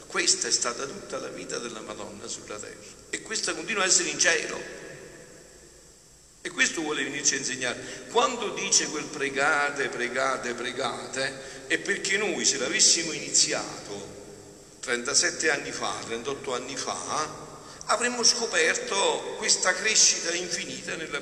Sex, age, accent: male, 50-69, native